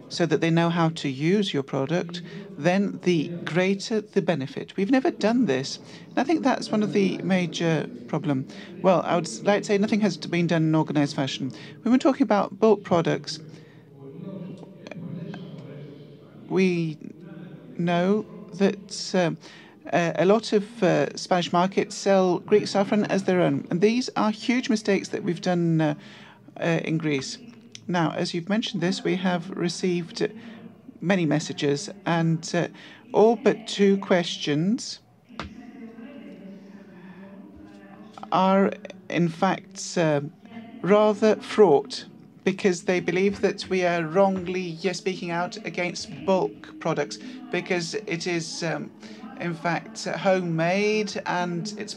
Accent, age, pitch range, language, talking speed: British, 40-59, 170-205 Hz, Greek, 135 wpm